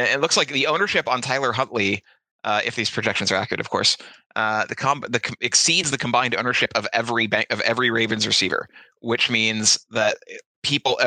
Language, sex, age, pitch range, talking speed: English, male, 30-49, 105-130 Hz, 195 wpm